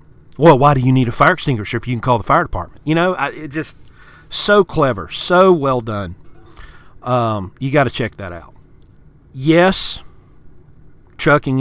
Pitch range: 120-175 Hz